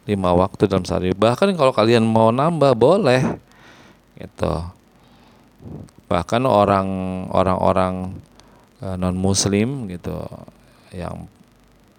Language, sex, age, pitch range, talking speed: Indonesian, male, 20-39, 90-115 Hz, 85 wpm